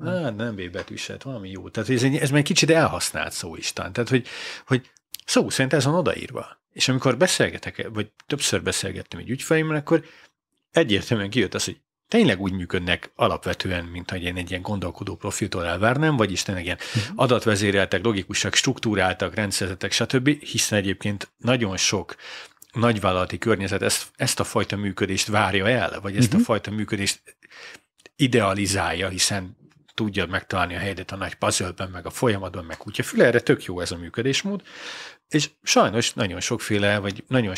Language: English